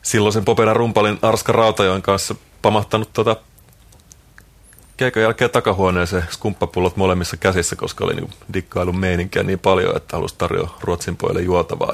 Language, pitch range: Finnish, 90-105 Hz